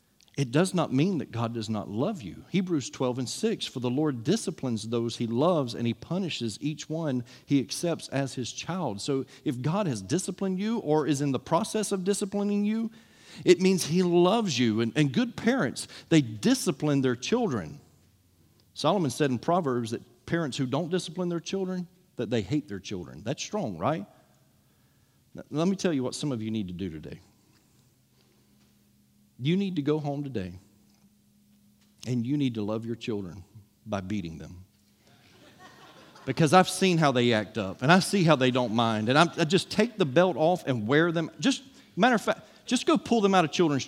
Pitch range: 115-180 Hz